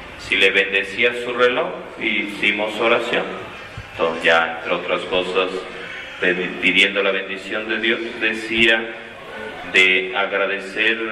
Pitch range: 90-120 Hz